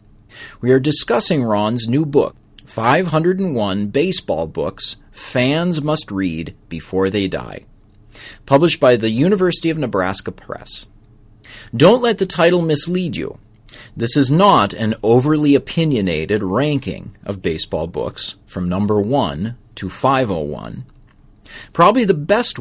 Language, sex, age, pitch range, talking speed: English, male, 30-49, 105-150 Hz, 120 wpm